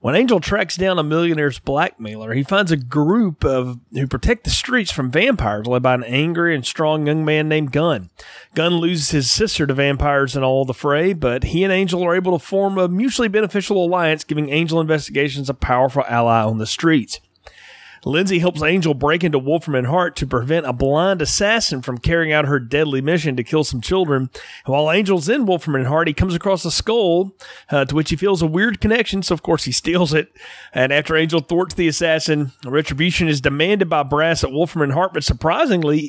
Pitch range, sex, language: 145-185 Hz, male, English